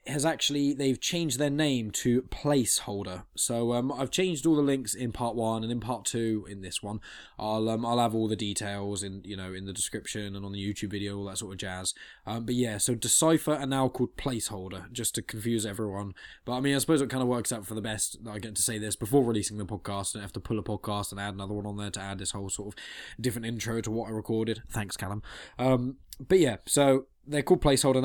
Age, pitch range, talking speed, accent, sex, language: 10-29, 105-135 Hz, 250 wpm, British, male, English